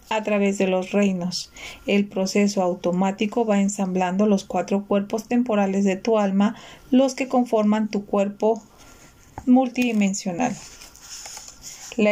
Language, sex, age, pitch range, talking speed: Spanish, female, 40-59, 195-240 Hz, 120 wpm